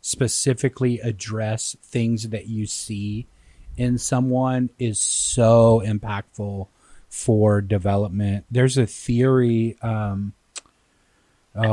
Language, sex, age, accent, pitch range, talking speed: English, male, 30-49, American, 105-125 Hz, 90 wpm